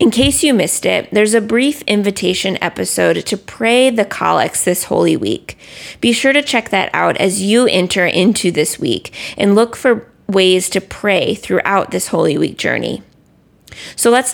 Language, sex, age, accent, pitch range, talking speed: English, female, 20-39, American, 185-235 Hz, 175 wpm